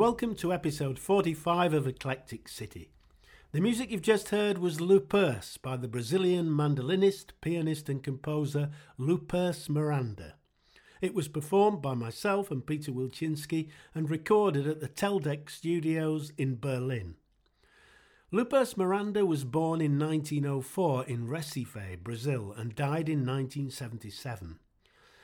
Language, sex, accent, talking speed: English, male, British, 125 wpm